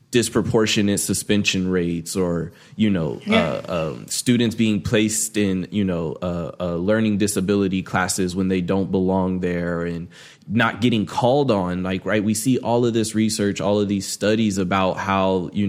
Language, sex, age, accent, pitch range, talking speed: English, male, 20-39, American, 90-110 Hz, 170 wpm